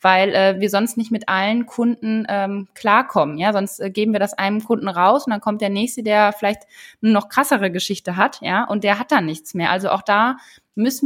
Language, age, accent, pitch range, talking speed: German, 20-39, German, 195-215 Hz, 230 wpm